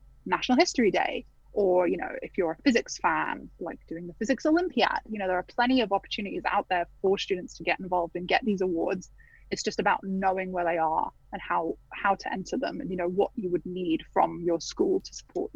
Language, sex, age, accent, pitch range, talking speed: English, female, 20-39, British, 180-215 Hz, 230 wpm